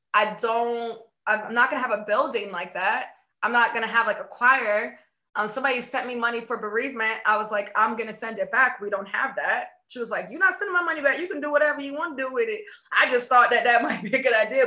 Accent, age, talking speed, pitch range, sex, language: American, 20-39, 260 wpm, 210-275 Hz, female, English